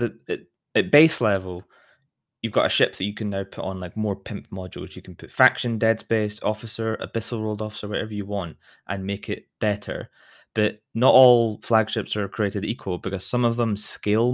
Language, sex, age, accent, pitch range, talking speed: English, male, 20-39, British, 95-115 Hz, 195 wpm